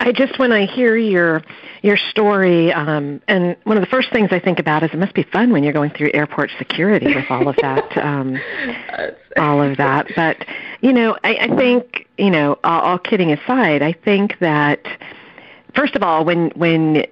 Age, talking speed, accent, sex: 50-69, 195 wpm, American, female